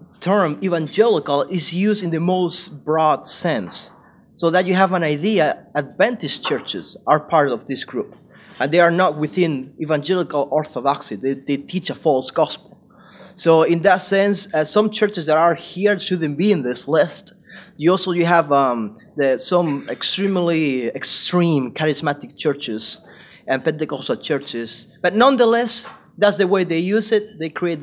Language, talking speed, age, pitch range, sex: English, 155 wpm, 30-49, 150-205 Hz, male